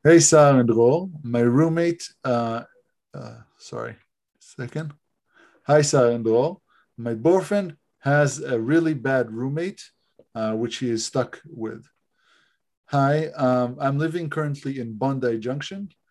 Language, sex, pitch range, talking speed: Hebrew, male, 115-150 Hz, 125 wpm